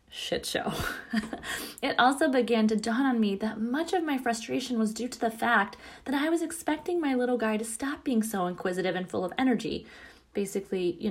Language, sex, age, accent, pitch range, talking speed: English, female, 20-39, American, 180-250 Hz, 200 wpm